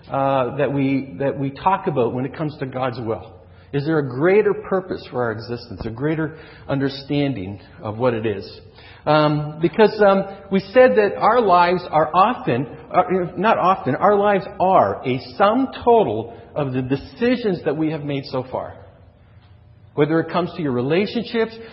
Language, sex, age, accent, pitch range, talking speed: English, male, 50-69, American, 120-195 Hz, 170 wpm